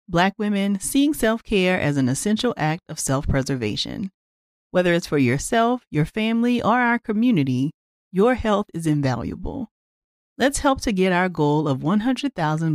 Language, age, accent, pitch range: English, 40-59, American, 145-225 Hz